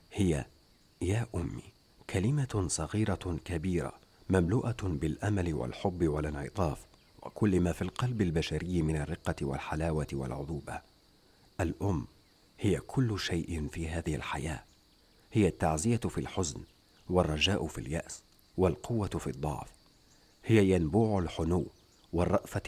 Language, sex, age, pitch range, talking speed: English, male, 50-69, 80-100 Hz, 105 wpm